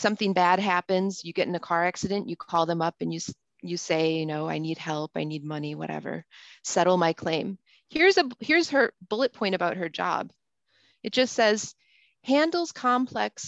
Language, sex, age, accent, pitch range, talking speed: English, female, 30-49, American, 170-220 Hz, 185 wpm